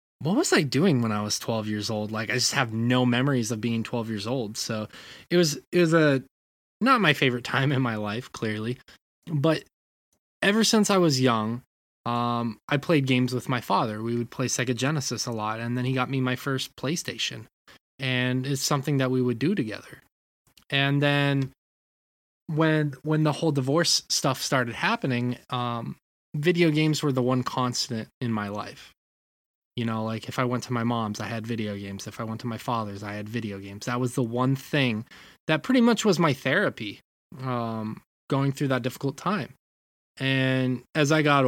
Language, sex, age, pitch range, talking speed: English, male, 20-39, 110-135 Hz, 195 wpm